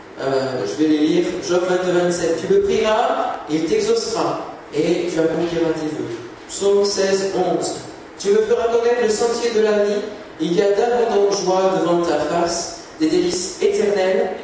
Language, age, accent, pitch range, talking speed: French, 30-49, French, 175-235 Hz, 170 wpm